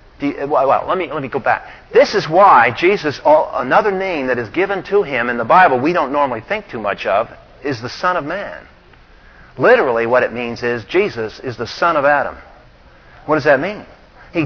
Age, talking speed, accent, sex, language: 50-69, 210 wpm, American, male, English